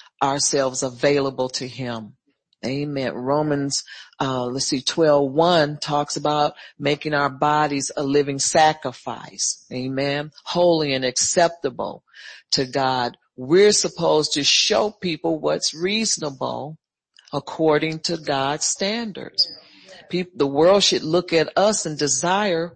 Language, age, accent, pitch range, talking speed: English, 40-59, American, 140-185 Hz, 115 wpm